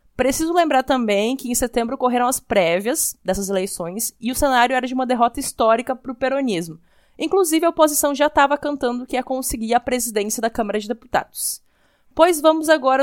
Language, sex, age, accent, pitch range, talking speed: Portuguese, female, 20-39, Brazilian, 230-275 Hz, 185 wpm